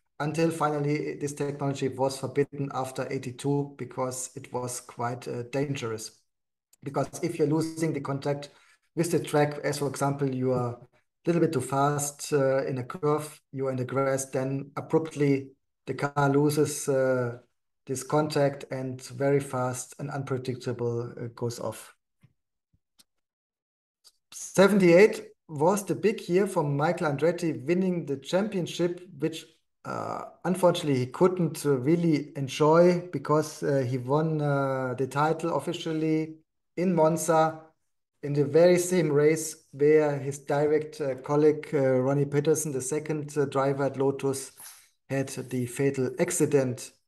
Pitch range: 135-160 Hz